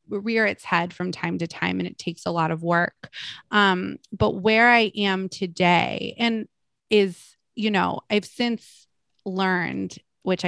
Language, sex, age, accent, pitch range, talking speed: English, female, 20-39, American, 170-205 Hz, 160 wpm